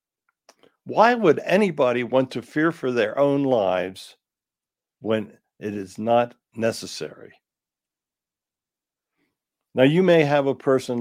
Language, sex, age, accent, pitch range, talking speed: English, male, 60-79, American, 115-150 Hz, 115 wpm